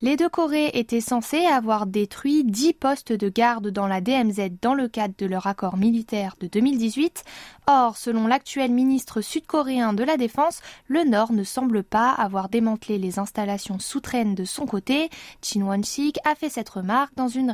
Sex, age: female, 10-29